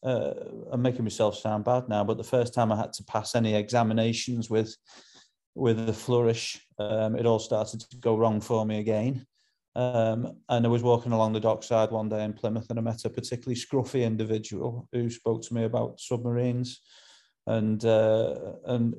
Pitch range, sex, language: 110-125 Hz, male, English